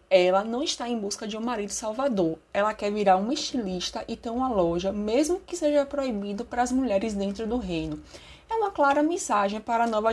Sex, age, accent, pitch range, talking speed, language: female, 20-39, Brazilian, 195-270 Hz, 205 wpm, Portuguese